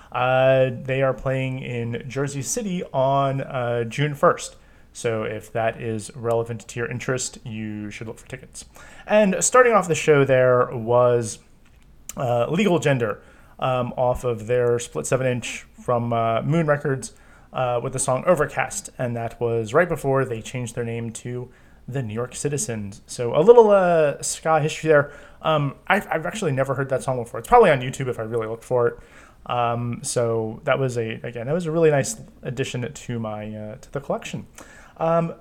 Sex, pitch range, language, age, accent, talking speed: male, 120-155 Hz, English, 30-49, American, 185 wpm